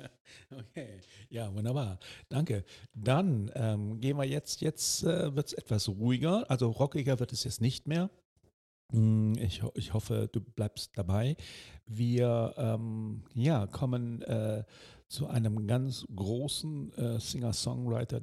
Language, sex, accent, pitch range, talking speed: German, male, German, 105-130 Hz, 130 wpm